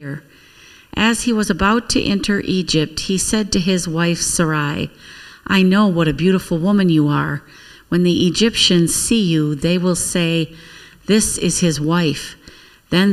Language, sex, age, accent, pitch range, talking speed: English, female, 50-69, American, 155-185 Hz, 155 wpm